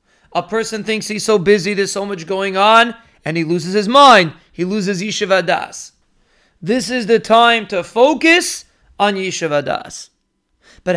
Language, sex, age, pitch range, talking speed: English, male, 40-59, 180-225 Hz, 165 wpm